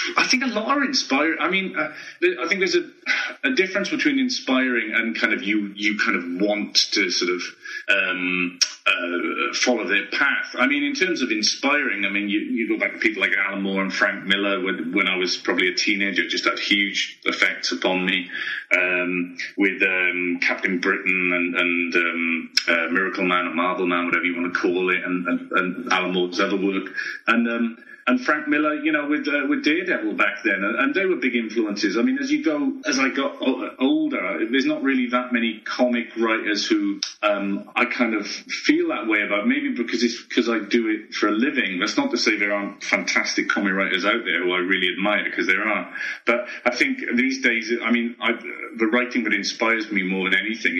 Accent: British